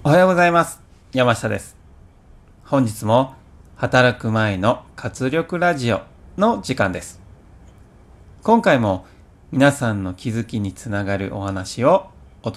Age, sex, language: 40-59, male, Japanese